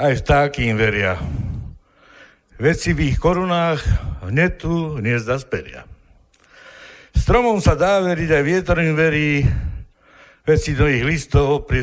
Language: Slovak